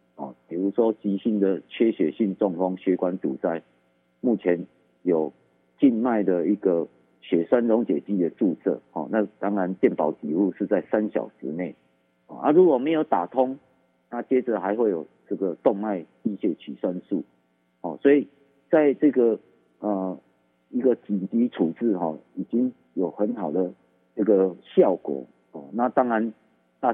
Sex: male